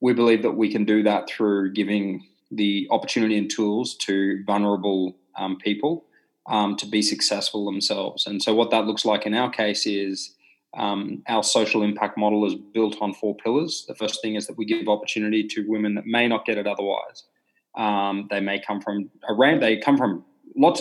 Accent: Australian